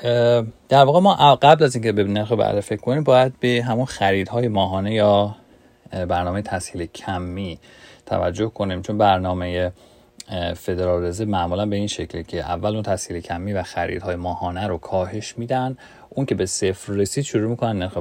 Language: Persian